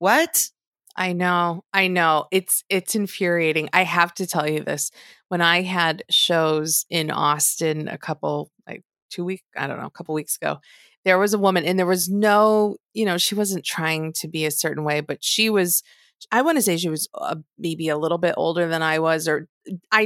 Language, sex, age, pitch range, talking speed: English, female, 30-49, 160-215 Hz, 205 wpm